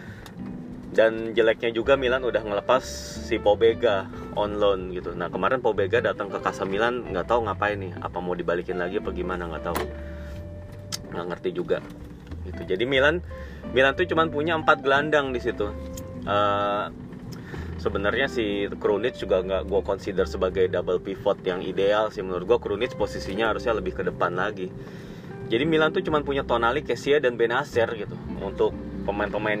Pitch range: 90-130 Hz